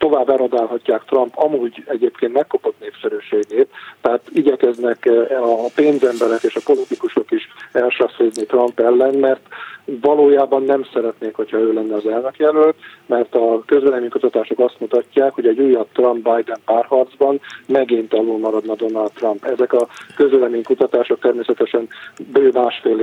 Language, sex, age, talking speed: Hungarian, male, 40-59, 120 wpm